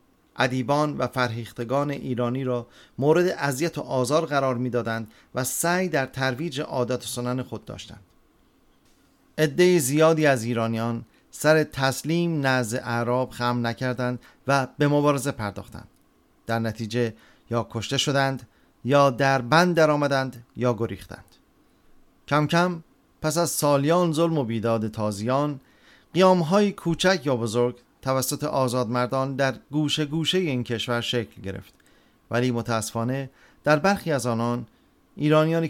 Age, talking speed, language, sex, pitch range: 40-59, 130 wpm, Persian, male, 115-145 Hz